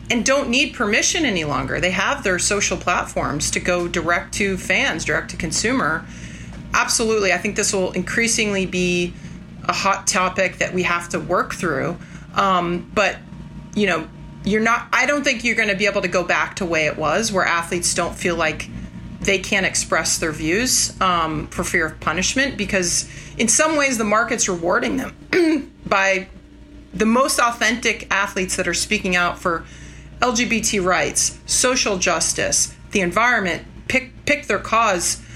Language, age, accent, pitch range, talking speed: English, 30-49, American, 175-220 Hz, 170 wpm